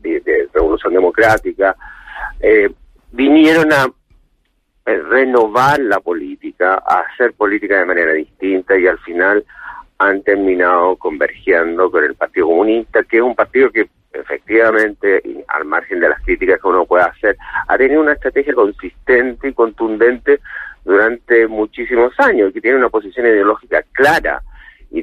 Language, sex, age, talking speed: Spanish, male, 50-69, 135 wpm